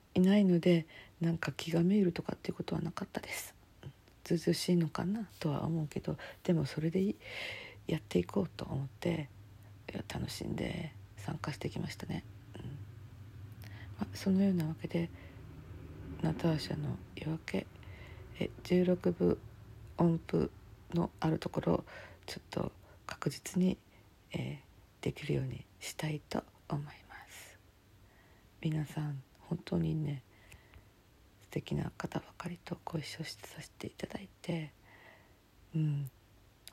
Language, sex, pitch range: Japanese, female, 105-170 Hz